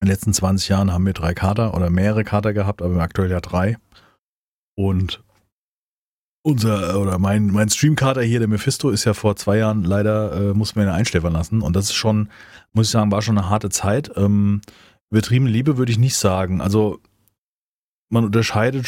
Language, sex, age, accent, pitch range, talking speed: German, male, 30-49, German, 95-115 Hz, 190 wpm